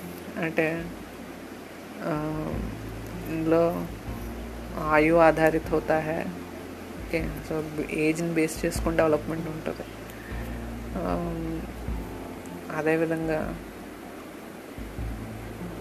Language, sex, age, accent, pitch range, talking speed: Telugu, female, 30-49, native, 115-170 Hz, 50 wpm